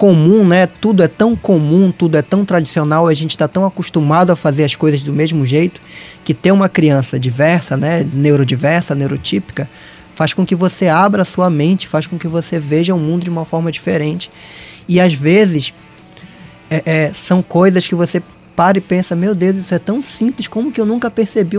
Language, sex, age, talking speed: Portuguese, male, 20-39, 200 wpm